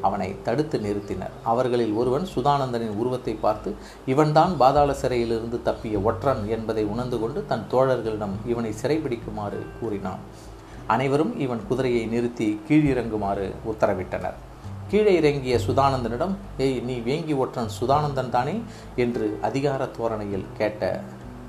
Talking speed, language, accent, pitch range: 110 wpm, Tamil, native, 110-140 Hz